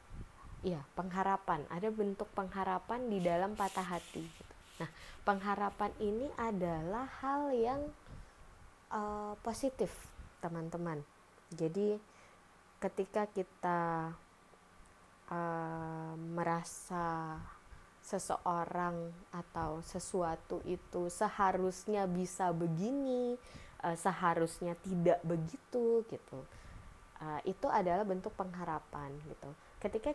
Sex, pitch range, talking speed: female, 170-210 Hz, 85 wpm